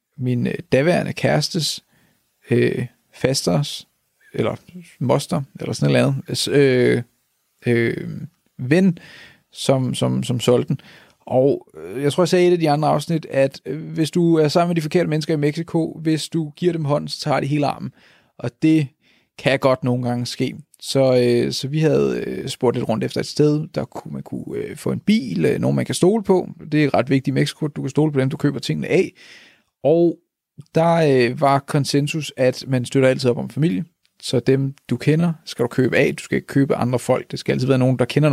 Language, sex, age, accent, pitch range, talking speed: Danish, male, 30-49, native, 125-160 Hz, 210 wpm